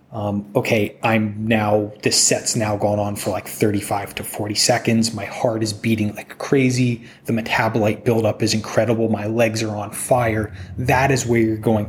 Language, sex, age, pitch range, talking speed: English, male, 20-39, 105-125 Hz, 180 wpm